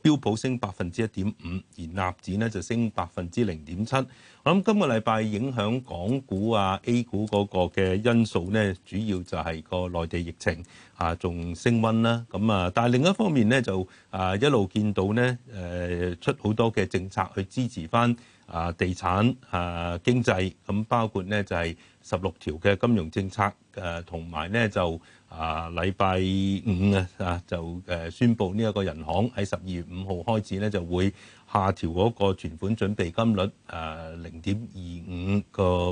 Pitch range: 90-115 Hz